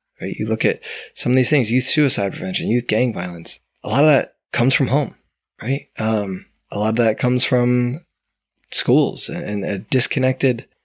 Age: 20-39